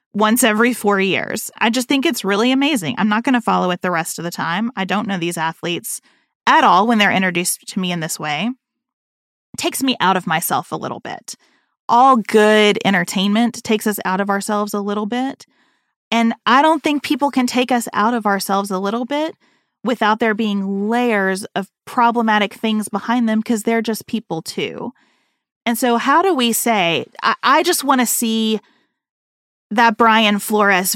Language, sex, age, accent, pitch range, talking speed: English, female, 30-49, American, 195-245 Hz, 190 wpm